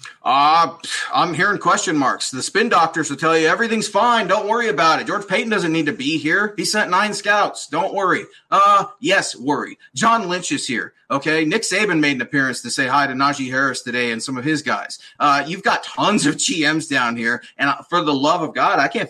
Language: English